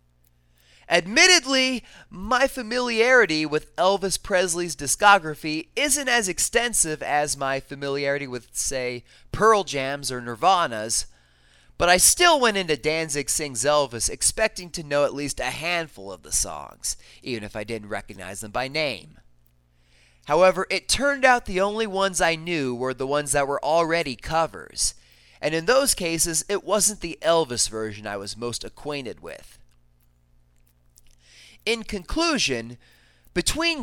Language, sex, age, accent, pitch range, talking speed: English, male, 30-49, American, 110-175 Hz, 140 wpm